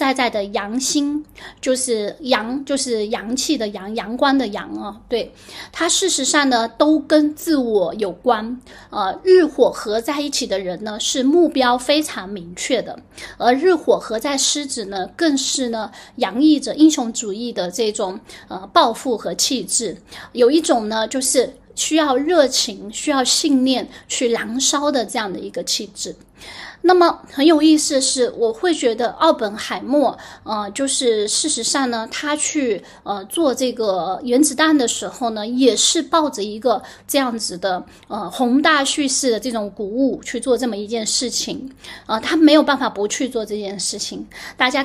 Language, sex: Chinese, female